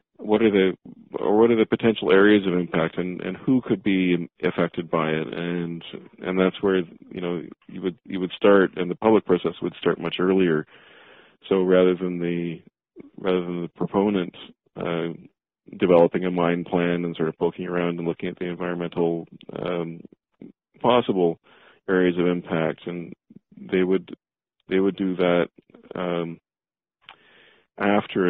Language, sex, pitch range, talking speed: English, male, 85-95 Hz, 160 wpm